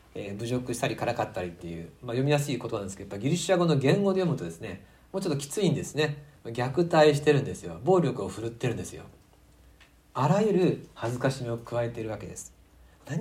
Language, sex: Japanese, male